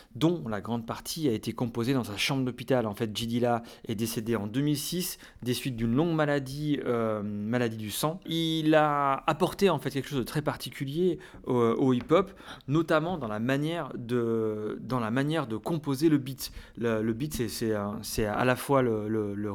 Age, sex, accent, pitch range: 30-49, male, French, 115-150 Hz